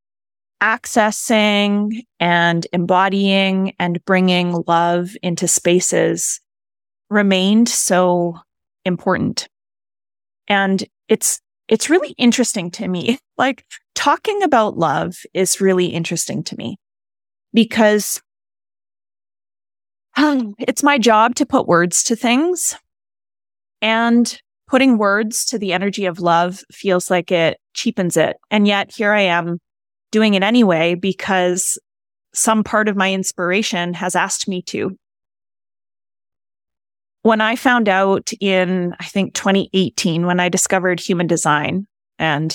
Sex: female